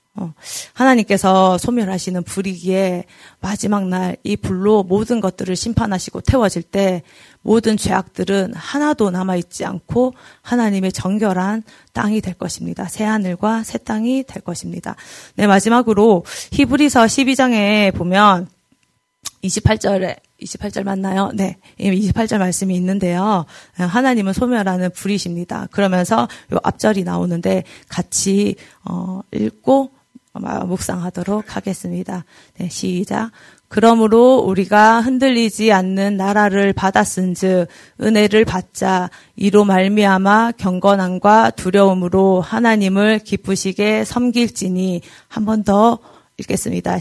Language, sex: Korean, female